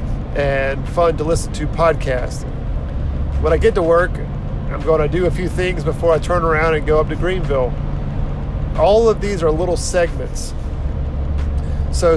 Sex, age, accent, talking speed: male, 40-59, American, 165 wpm